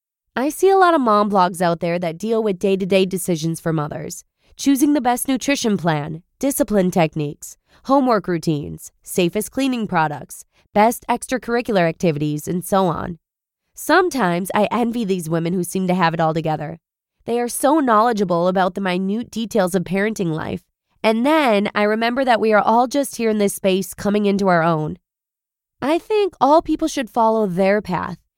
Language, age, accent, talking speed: English, 20-39, American, 175 wpm